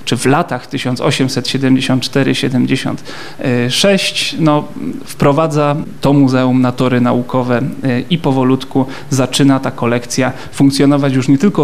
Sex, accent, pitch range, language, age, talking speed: male, native, 130-145 Hz, Polish, 30-49, 110 wpm